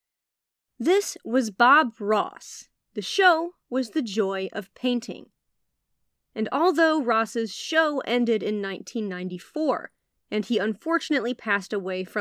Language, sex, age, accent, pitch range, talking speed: English, female, 30-49, American, 205-285 Hz, 120 wpm